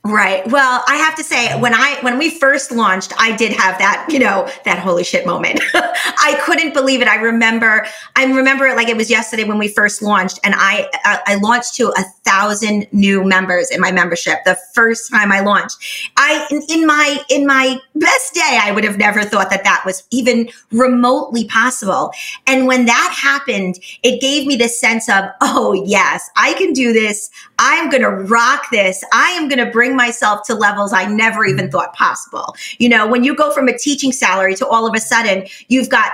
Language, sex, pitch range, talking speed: English, female, 205-270 Hz, 210 wpm